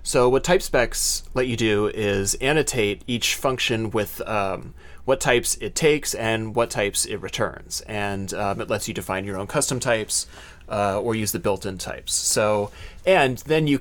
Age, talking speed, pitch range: 30-49, 185 wpm, 100-125 Hz